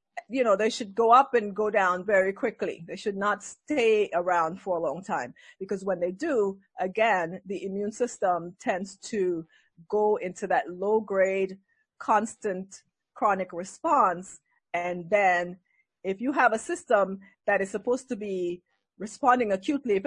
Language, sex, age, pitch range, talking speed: English, female, 30-49, 190-245 Hz, 155 wpm